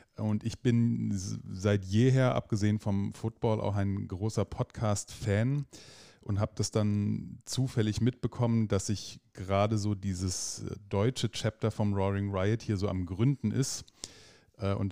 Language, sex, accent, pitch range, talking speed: German, male, German, 95-110 Hz, 135 wpm